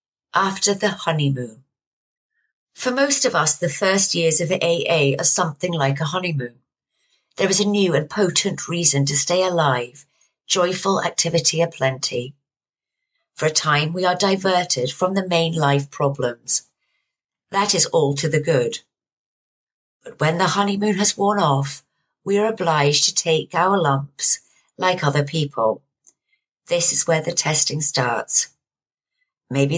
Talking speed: 145 wpm